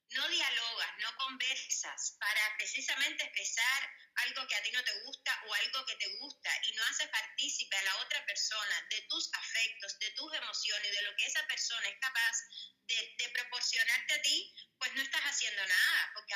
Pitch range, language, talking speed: 250-305 Hz, Spanish, 185 wpm